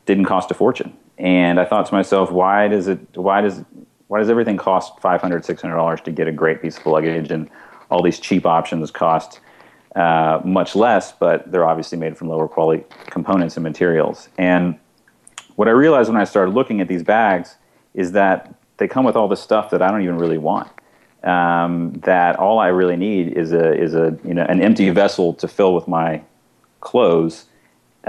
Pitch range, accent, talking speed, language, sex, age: 85-95 Hz, American, 200 wpm, English, male, 40-59